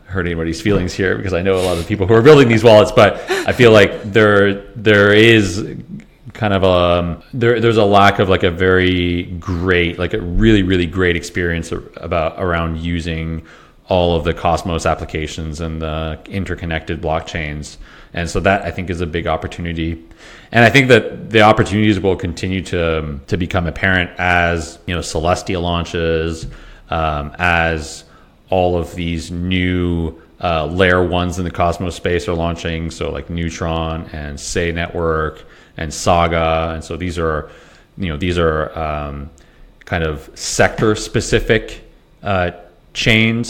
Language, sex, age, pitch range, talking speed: English, male, 30-49, 80-95 Hz, 160 wpm